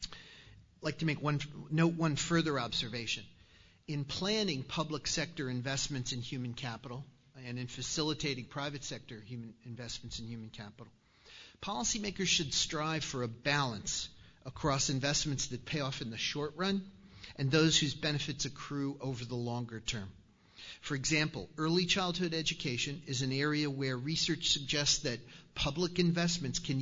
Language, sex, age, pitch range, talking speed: English, male, 50-69, 120-155 Hz, 150 wpm